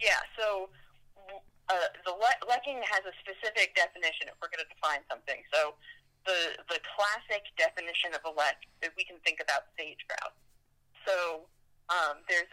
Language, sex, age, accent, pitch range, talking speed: English, female, 30-49, American, 155-195 Hz, 160 wpm